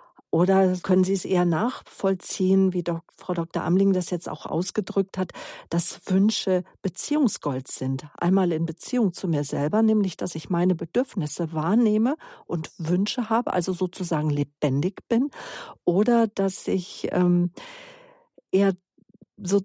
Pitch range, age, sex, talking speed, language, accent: 180-215 Hz, 50-69, female, 135 wpm, German, German